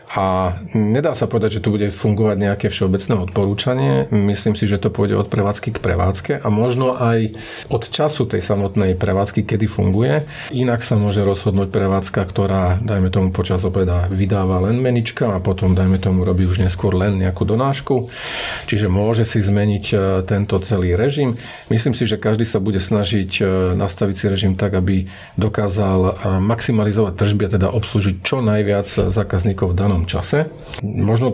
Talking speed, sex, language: 160 wpm, male, Slovak